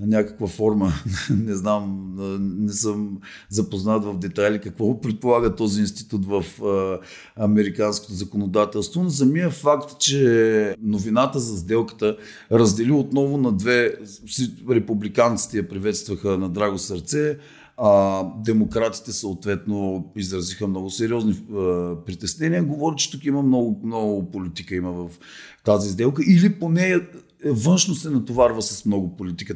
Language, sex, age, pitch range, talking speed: Bulgarian, male, 40-59, 100-115 Hz, 125 wpm